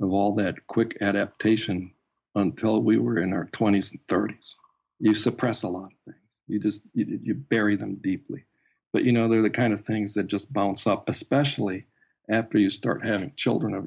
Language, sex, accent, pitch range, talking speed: English, male, American, 100-115 Hz, 195 wpm